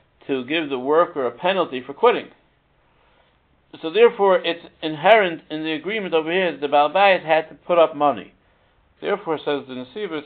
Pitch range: 130-155 Hz